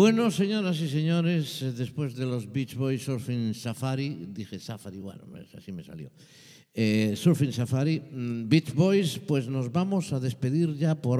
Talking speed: 155 wpm